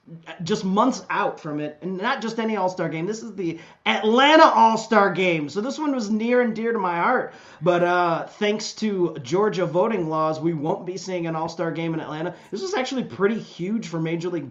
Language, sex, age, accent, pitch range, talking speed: English, male, 30-49, American, 150-190 Hz, 210 wpm